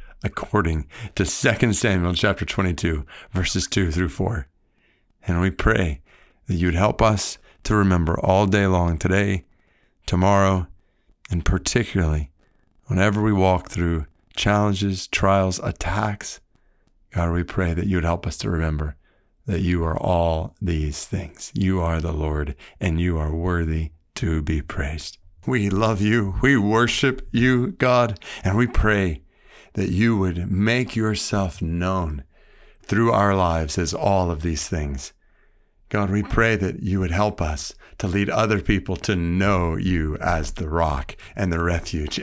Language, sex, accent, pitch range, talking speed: English, male, American, 85-115 Hz, 150 wpm